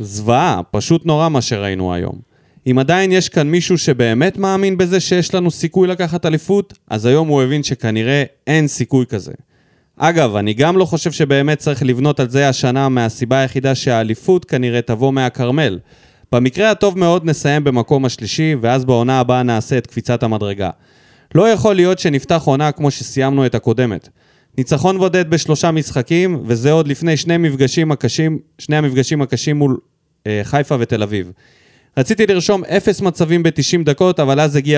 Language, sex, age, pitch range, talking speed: Hebrew, male, 20-39, 125-165 Hz, 155 wpm